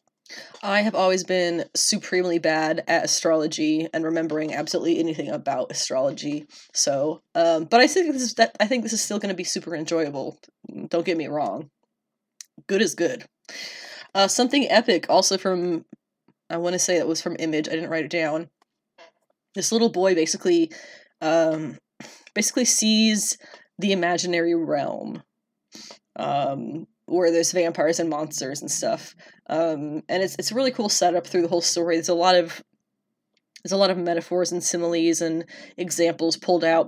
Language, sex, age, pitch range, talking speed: English, female, 20-39, 165-195 Hz, 165 wpm